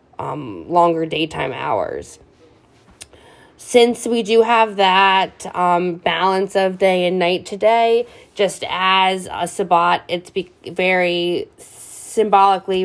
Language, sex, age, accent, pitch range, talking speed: English, female, 20-39, American, 165-195 Hz, 110 wpm